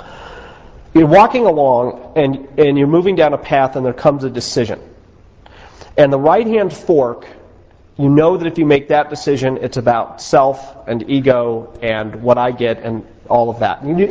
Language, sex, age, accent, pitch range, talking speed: English, male, 40-59, American, 120-165 Hz, 185 wpm